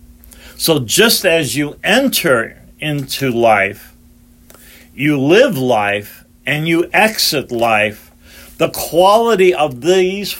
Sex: male